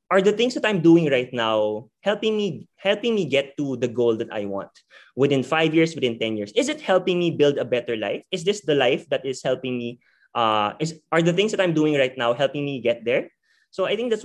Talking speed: 250 wpm